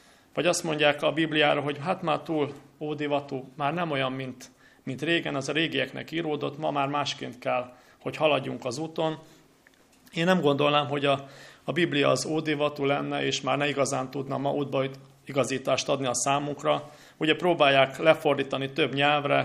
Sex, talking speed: male, 165 wpm